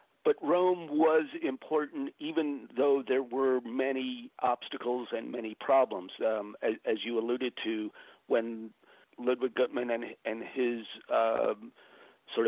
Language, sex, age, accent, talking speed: English, male, 50-69, American, 130 wpm